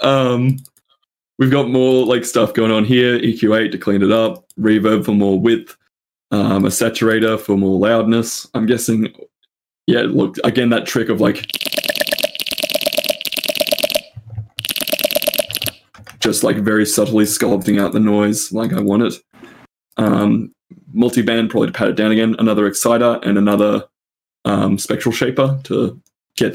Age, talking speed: 20-39, 140 wpm